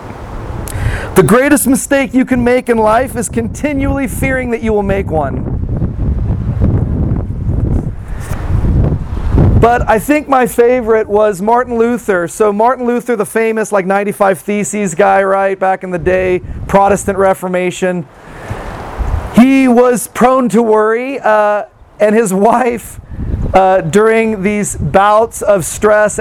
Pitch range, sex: 185-245 Hz, male